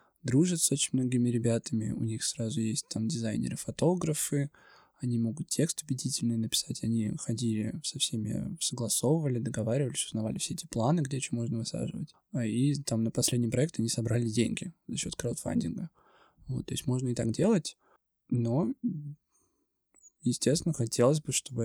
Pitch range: 115-150 Hz